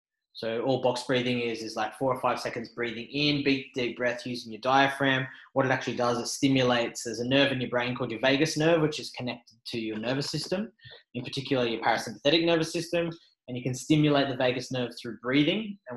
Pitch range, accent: 115-140 Hz, Australian